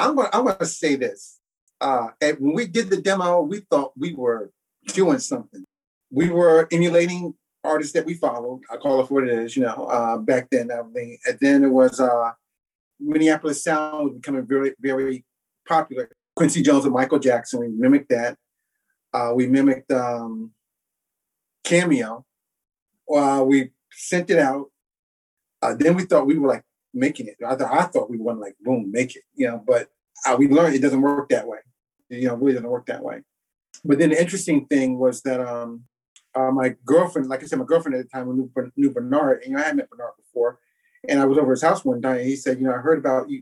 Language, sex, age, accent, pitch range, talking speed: English, male, 30-49, American, 130-195 Hz, 215 wpm